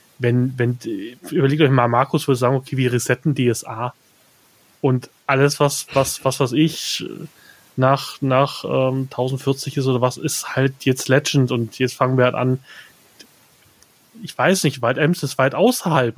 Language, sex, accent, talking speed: German, male, German, 165 wpm